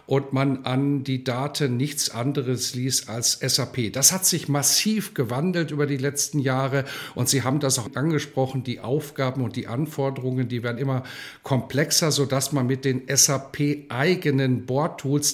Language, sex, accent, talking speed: German, male, German, 155 wpm